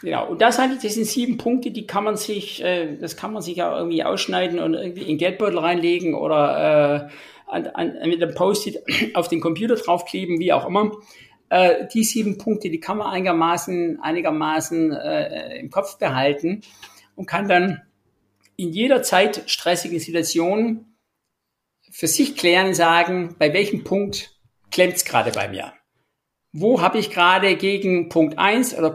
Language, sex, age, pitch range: German, male, 50-69, 155-195 Hz